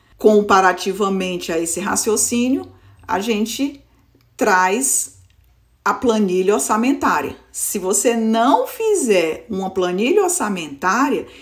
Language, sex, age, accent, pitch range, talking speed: Portuguese, female, 50-69, Brazilian, 185-275 Hz, 90 wpm